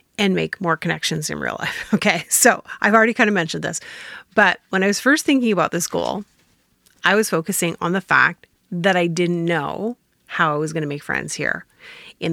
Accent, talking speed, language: American, 210 wpm, English